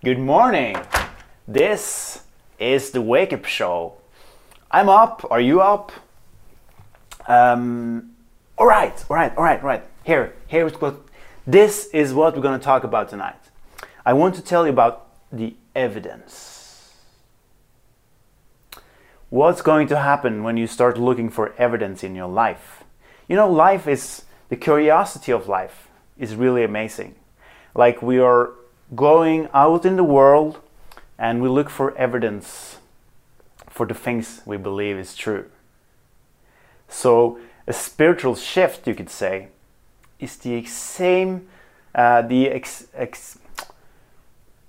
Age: 30-49